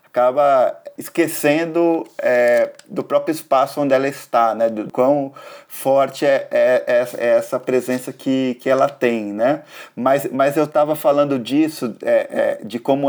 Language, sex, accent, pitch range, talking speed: Portuguese, male, Brazilian, 120-160 Hz, 145 wpm